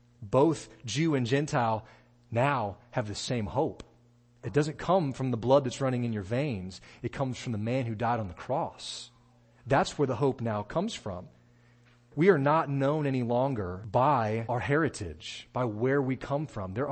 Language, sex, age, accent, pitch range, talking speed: English, male, 30-49, American, 115-145 Hz, 185 wpm